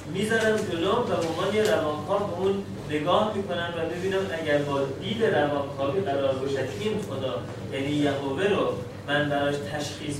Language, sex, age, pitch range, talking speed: Persian, male, 30-49, 135-170 Hz, 140 wpm